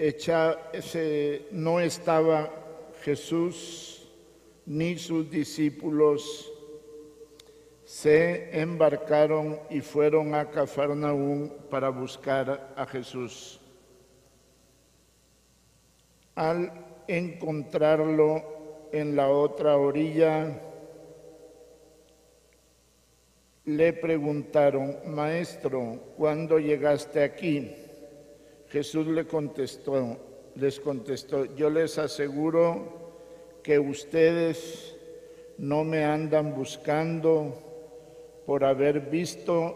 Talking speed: 70 wpm